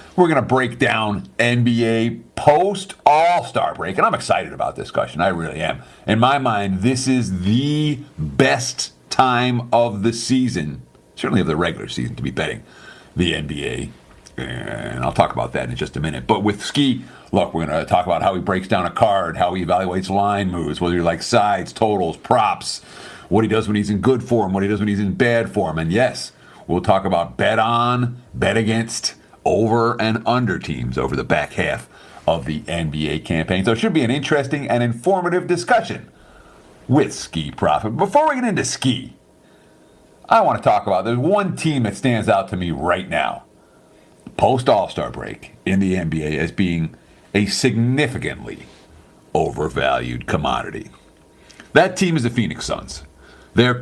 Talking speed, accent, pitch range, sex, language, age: 180 wpm, American, 90-130 Hz, male, English, 50-69